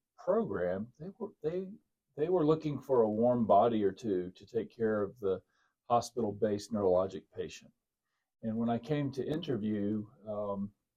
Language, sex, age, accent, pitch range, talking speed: English, male, 50-69, American, 105-130 Hz, 140 wpm